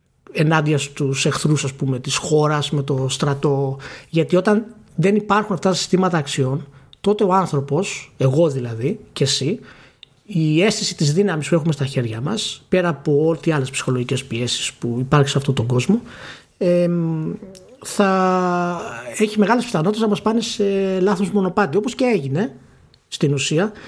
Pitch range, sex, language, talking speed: 140-195 Hz, male, Greek, 150 wpm